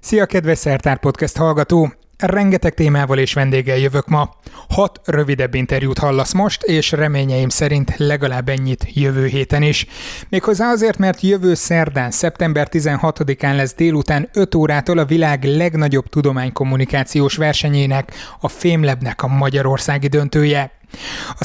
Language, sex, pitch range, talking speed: Hungarian, male, 135-160 Hz, 130 wpm